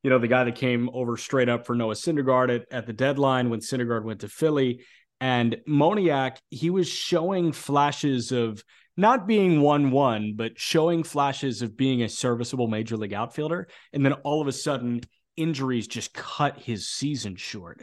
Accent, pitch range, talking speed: American, 120-155 Hz, 180 wpm